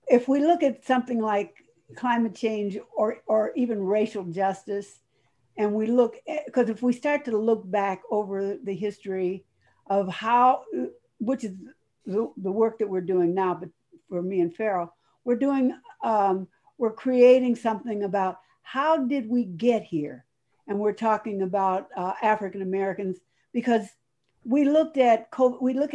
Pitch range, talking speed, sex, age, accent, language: 195-255 Hz, 155 wpm, female, 60-79, American, English